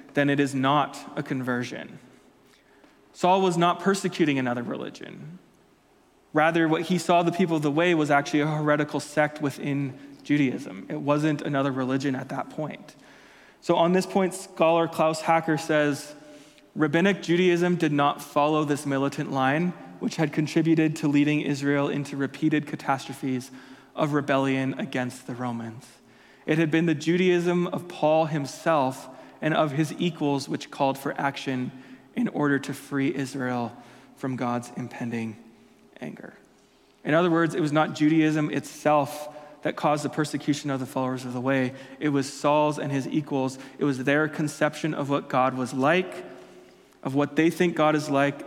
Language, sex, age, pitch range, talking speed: English, male, 20-39, 135-160 Hz, 160 wpm